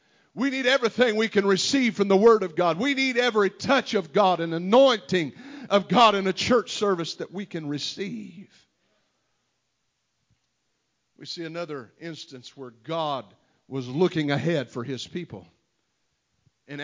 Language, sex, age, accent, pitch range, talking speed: English, male, 50-69, American, 130-175 Hz, 150 wpm